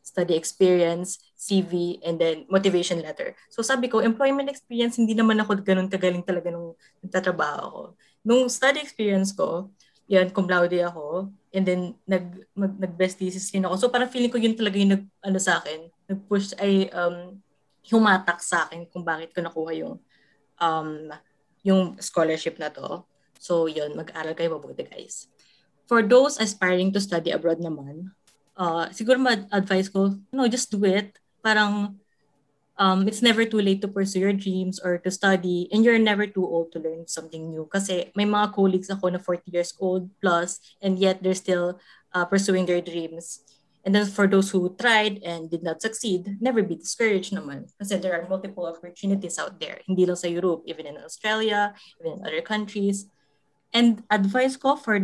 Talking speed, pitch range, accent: 170 wpm, 175-205 Hz, native